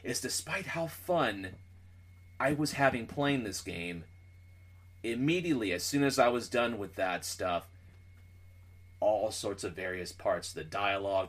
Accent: American